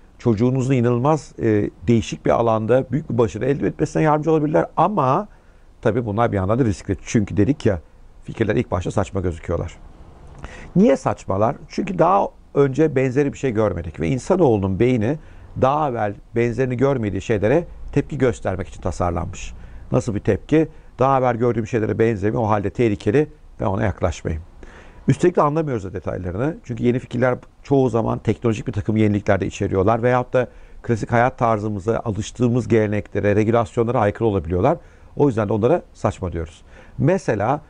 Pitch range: 100-130 Hz